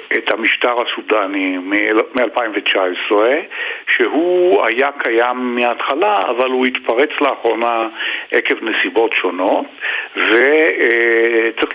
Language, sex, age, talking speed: Hebrew, male, 60-79, 80 wpm